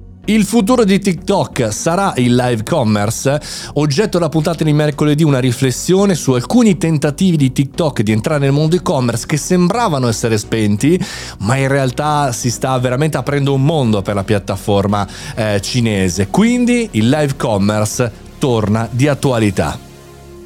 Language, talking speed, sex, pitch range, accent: Italian, 145 wpm, male, 110-165 Hz, native